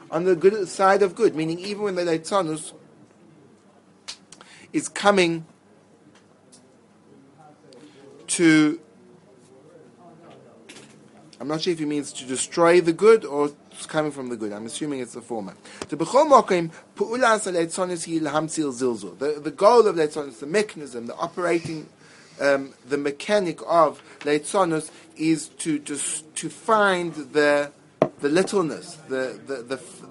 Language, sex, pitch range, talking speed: English, male, 145-185 Hz, 120 wpm